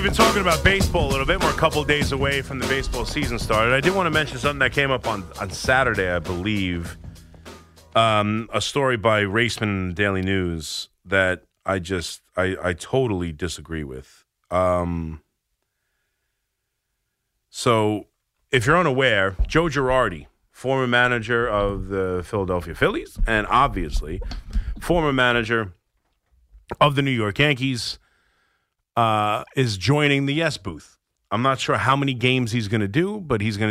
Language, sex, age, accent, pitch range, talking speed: English, male, 30-49, American, 95-135 Hz, 160 wpm